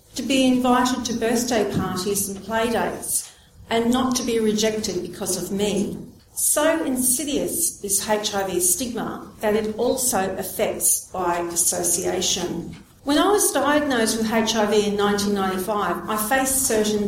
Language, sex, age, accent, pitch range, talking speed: English, female, 50-69, Australian, 205-260 Hz, 135 wpm